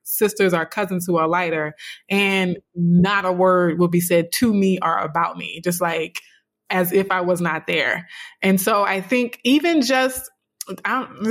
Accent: American